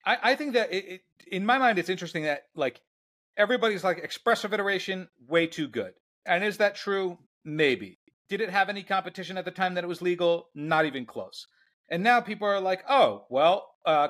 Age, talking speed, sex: 40-59, 195 wpm, male